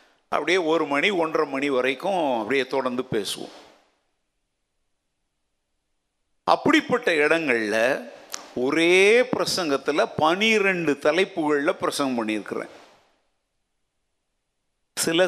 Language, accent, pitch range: Tamil, native, 140-205 Hz